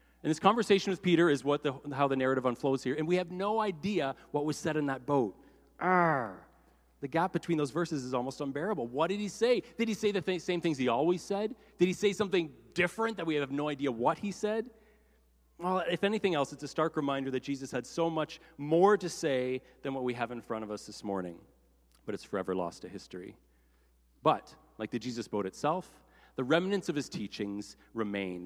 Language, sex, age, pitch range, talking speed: English, male, 30-49, 115-180 Hz, 220 wpm